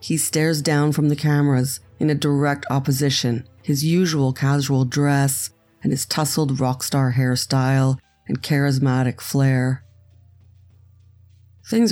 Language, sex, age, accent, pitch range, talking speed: English, female, 40-59, American, 125-150 Hz, 115 wpm